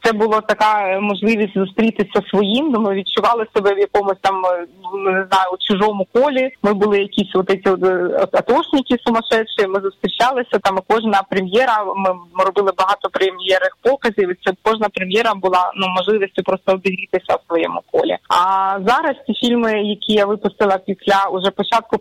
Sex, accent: female, native